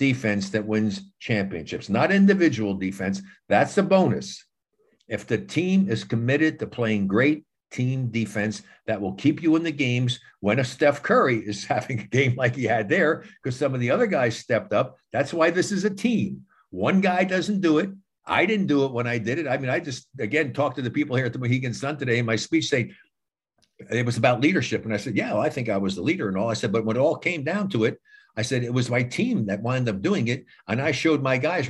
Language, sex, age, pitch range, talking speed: English, male, 60-79, 120-160 Hz, 240 wpm